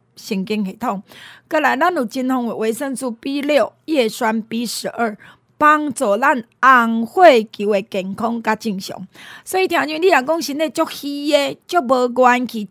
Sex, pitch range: female, 220-295 Hz